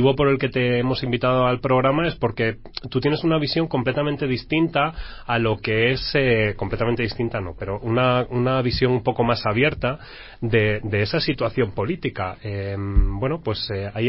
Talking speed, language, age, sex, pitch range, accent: 180 wpm, Spanish, 30-49, male, 110-130 Hz, Spanish